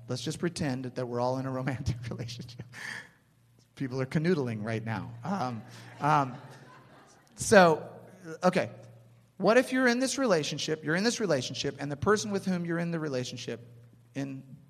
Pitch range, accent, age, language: 120-160 Hz, American, 40-59, English